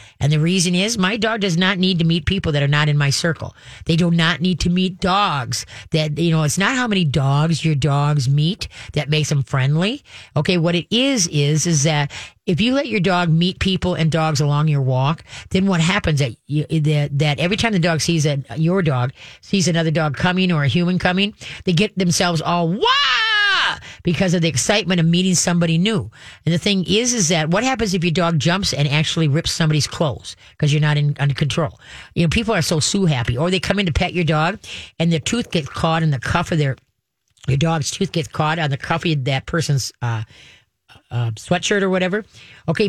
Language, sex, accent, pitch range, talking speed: English, female, American, 145-185 Hz, 220 wpm